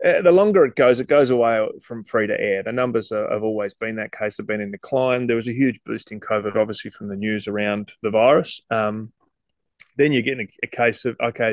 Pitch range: 110-130 Hz